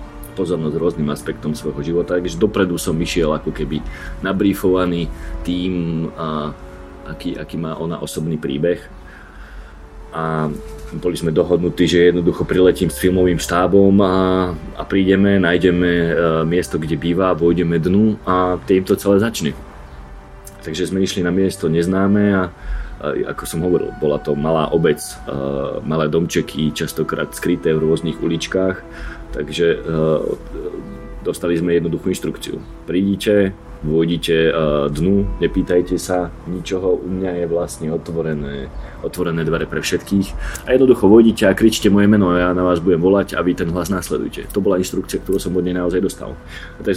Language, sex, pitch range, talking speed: Slovak, male, 80-95 Hz, 145 wpm